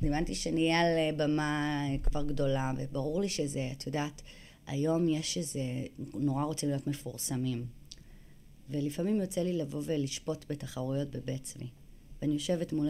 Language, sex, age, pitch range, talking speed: Hebrew, female, 30-49, 140-165 Hz, 140 wpm